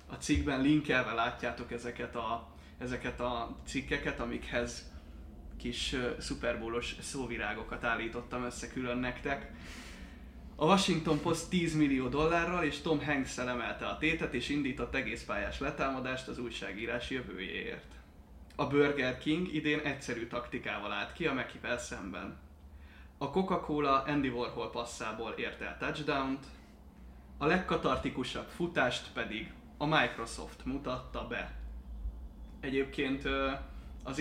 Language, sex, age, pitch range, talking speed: Hungarian, male, 20-39, 90-145 Hz, 115 wpm